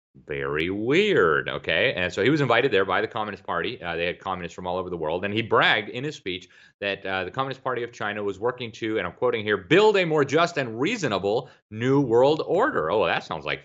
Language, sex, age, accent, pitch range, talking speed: English, male, 30-49, American, 95-150 Hz, 240 wpm